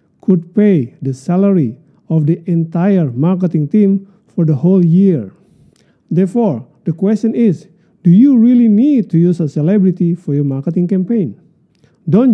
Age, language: 50-69, Indonesian